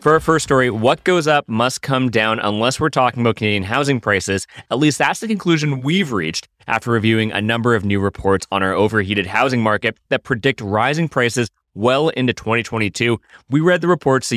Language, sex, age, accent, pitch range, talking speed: English, male, 20-39, American, 100-130 Hz, 200 wpm